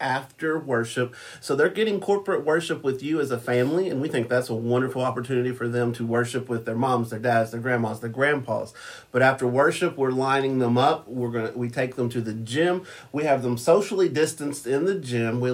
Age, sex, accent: 40-59, male, American